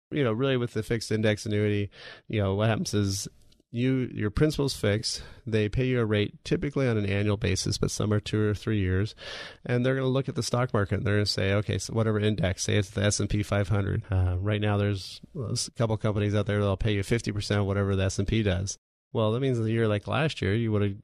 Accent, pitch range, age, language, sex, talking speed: American, 100-115 Hz, 30-49, English, male, 255 wpm